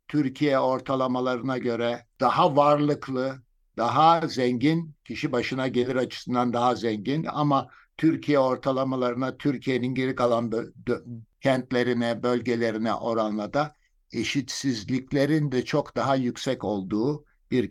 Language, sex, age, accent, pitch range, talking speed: Turkish, male, 60-79, native, 120-145 Hz, 100 wpm